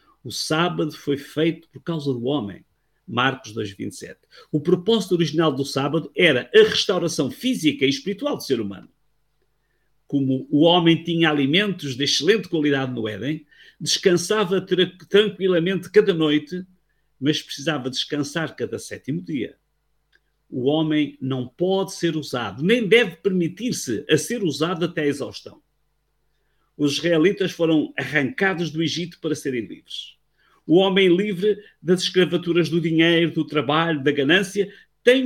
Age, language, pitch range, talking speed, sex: 50-69, Portuguese, 145-190 Hz, 135 wpm, male